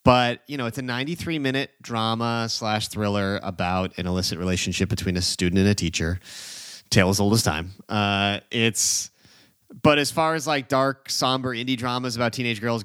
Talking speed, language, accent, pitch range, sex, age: 170 wpm, English, American, 100-130 Hz, male, 30-49